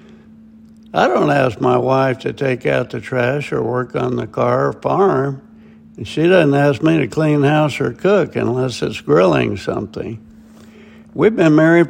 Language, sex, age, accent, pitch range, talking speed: English, male, 60-79, American, 125-205 Hz, 170 wpm